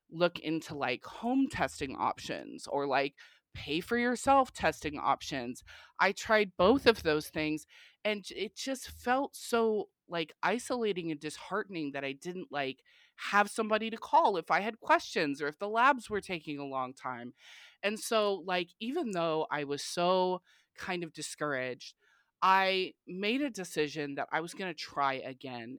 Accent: American